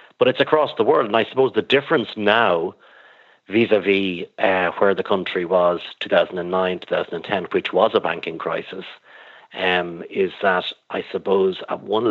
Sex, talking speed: male, 155 wpm